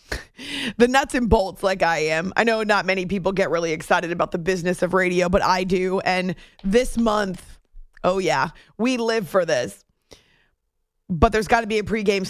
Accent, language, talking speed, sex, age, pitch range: American, English, 190 wpm, female, 30-49, 195-270 Hz